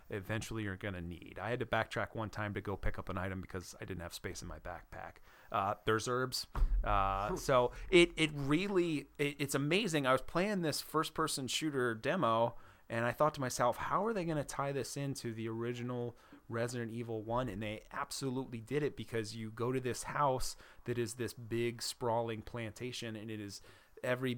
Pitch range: 110-130 Hz